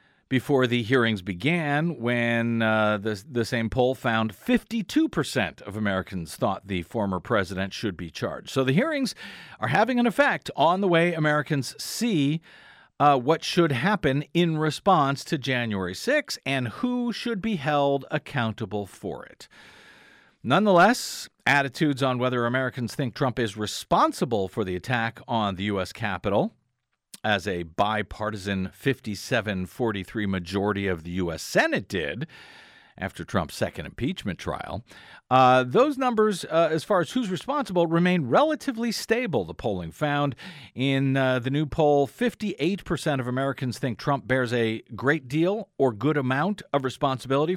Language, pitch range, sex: English, 110-165 Hz, male